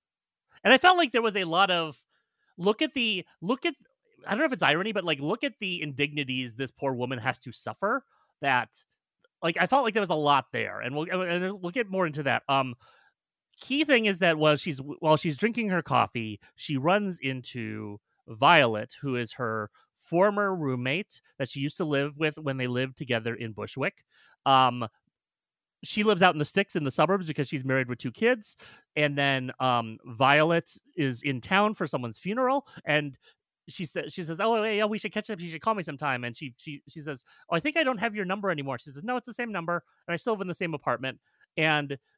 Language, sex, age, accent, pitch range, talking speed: English, male, 30-49, American, 130-185 Hz, 220 wpm